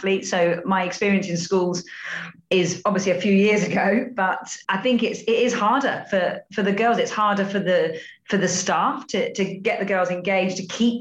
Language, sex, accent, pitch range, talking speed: English, female, British, 180-210 Hz, 200 wpm